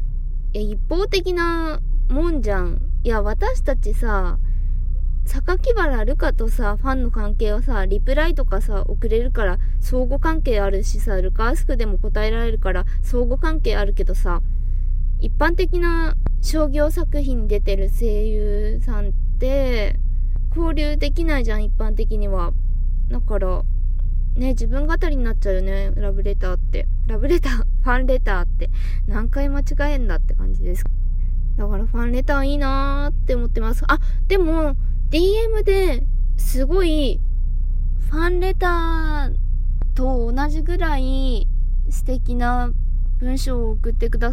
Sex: female